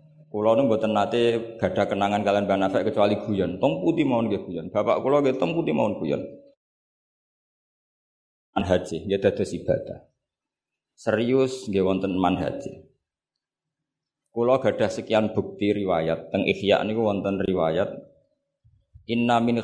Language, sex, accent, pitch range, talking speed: Indonesian, male, native, 105-125 Hz, 100 wpm